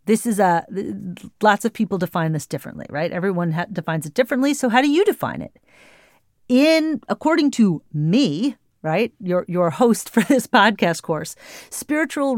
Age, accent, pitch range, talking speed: 40-59, American, 175-240 Hz, 165 wpm